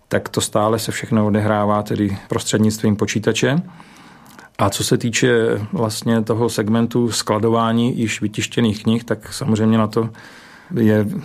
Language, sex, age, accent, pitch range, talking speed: Czech, male, 40-59, native, 110-120 Hz, 135 wpm